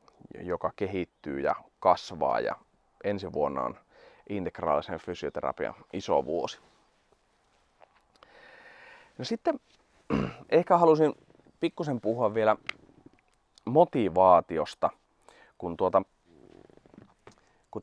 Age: 30-49